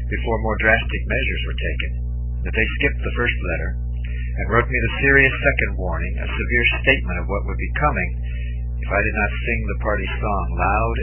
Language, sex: English, male